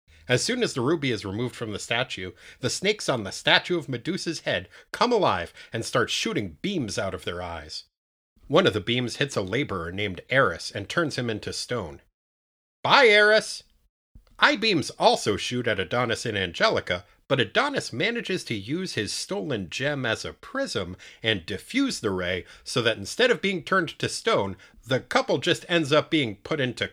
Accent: American